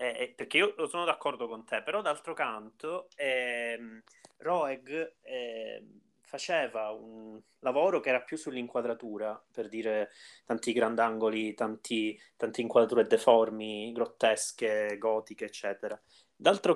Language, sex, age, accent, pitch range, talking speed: Italian, male, 20-39, native, 110-145 Hz, 115 wpm